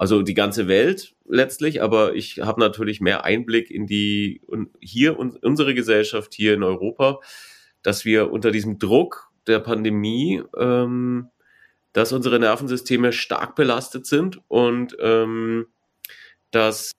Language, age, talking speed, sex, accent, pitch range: German, 30-49, 125 wpm, male, German, 105-125 Hz